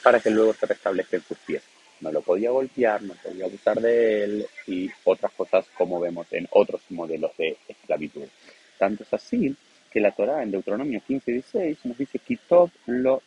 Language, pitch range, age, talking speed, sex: Spanish, 95-160 Hz, 30-49, 180 wpm, male